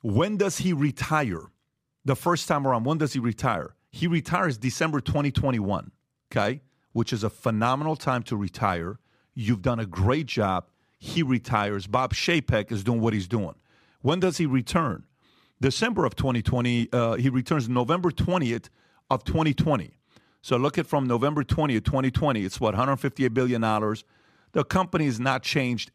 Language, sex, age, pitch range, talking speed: English, male, 40-59, 120-155 Hz, 155 wpm